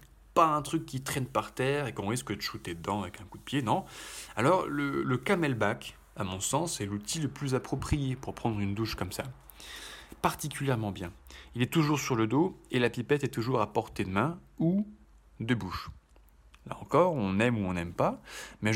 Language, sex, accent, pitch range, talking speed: French, male, French, 95-130 Hz, 210 wpm